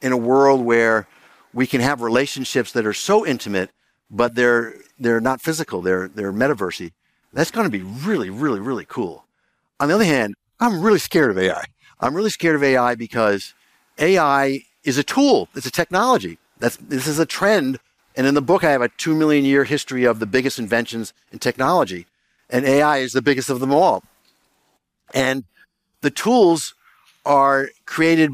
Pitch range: 120-150 Hz